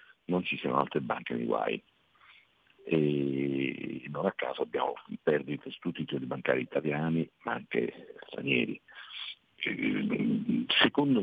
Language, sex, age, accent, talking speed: Italian, male, 50-69, native, 125 wpm